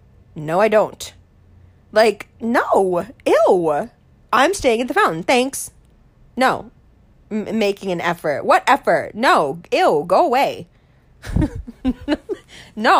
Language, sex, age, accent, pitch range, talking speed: English, female, 20-39, American, 175-225 Hz, 110 wpm